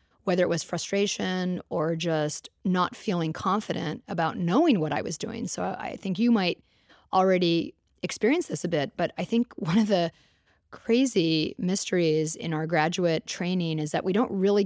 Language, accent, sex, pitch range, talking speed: English, American, female, 160-205 Hz, 170 wpm